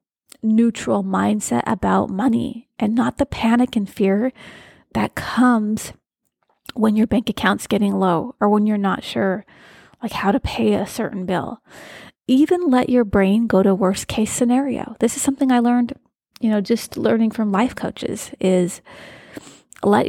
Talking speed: 160 wpm